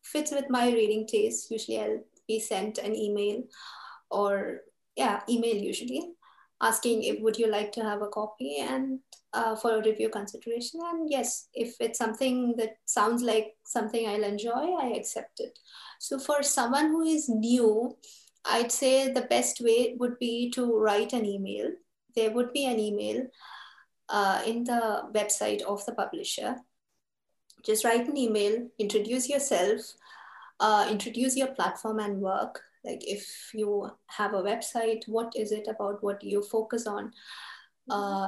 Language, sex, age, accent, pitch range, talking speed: English, female, 20-39, Indian, 210-250 Hz, 155 wpm